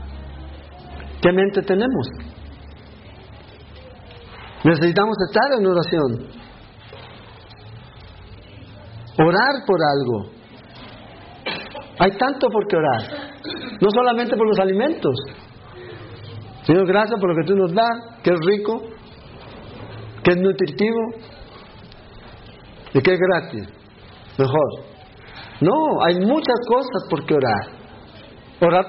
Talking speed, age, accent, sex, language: 100 wpm, 50-69, Mexican, male, Spanish